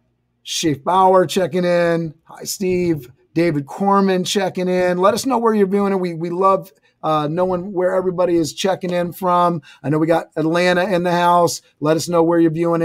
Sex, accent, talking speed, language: male, American, 190 wpm, English